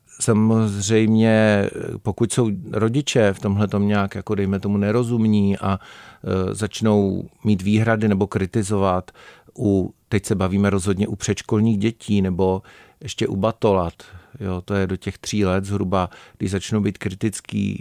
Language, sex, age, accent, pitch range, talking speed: Czech, male, 50-69, native, 100-110 Hz, 140 wpm